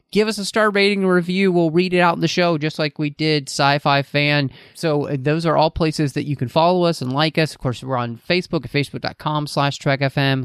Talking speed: 235 wpm